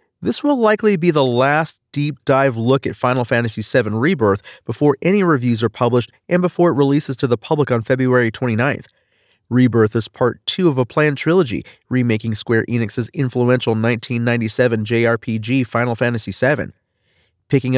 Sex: male